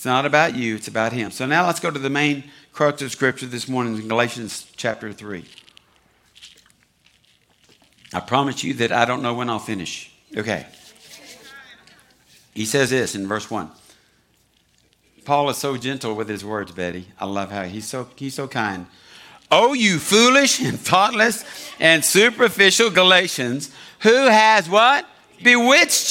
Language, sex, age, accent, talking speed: English, male, 60-79, American, 155 wpm